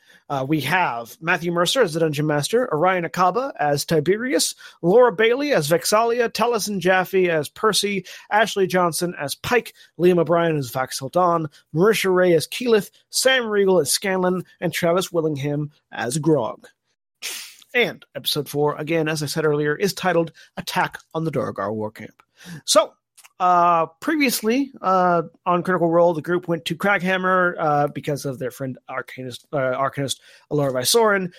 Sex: male